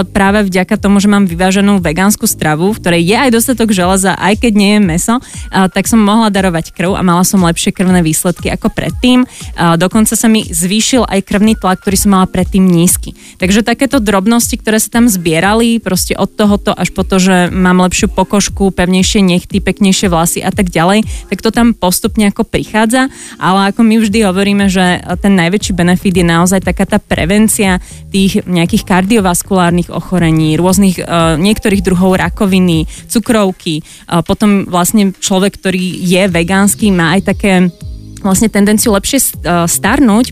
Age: 20-39